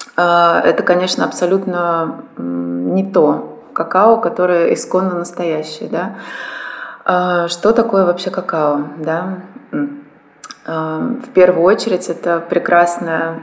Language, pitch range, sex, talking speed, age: Russian, 160-190 Hz, female, 80 wpm, 20-39